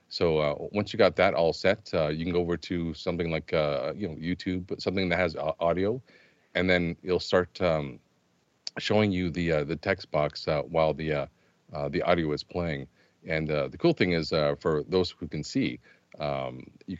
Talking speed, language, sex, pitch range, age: 210 wpm, English, male, 75-95 Hz, 40-59